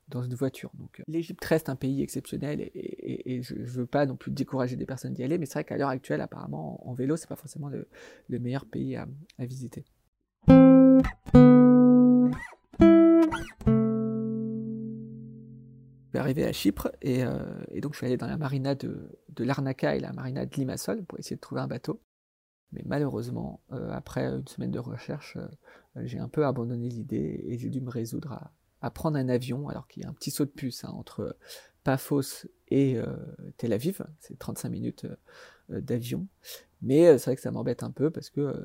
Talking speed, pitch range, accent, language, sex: 200 wpm, 120-155 Hz, French, French, male